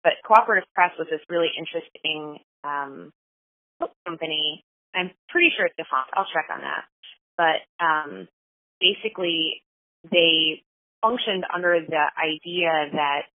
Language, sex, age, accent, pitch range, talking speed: English, female, 30-49, American, 145-180 Hz, 125 wpm